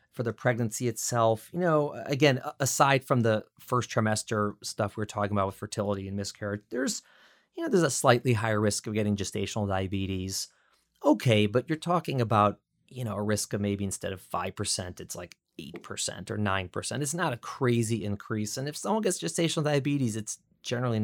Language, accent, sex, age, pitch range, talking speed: English, American, male, 30-49, 105-125 Hz, 185 wpm